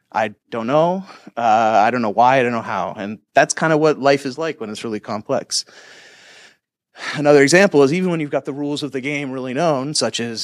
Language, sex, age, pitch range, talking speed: English, male, 30-49, 110-135 Hz, 230 wpm